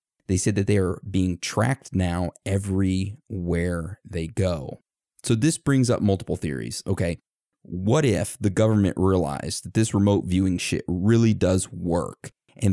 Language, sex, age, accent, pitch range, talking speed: English, male, 30-49, American, 90-105 Hz, 150 wpm